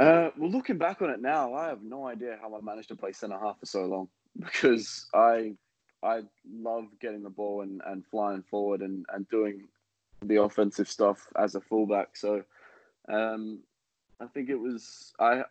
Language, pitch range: English, 100-110 Hz